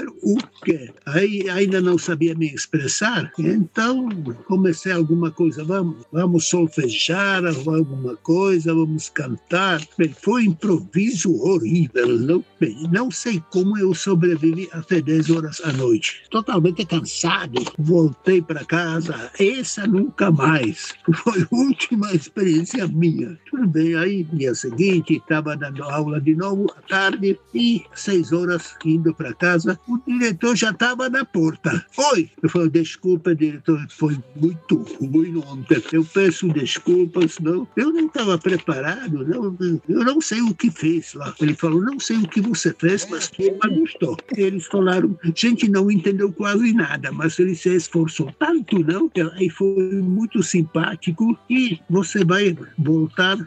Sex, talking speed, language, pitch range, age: male, 145 wpm, Portuguese, 160-195 Hz, 60-79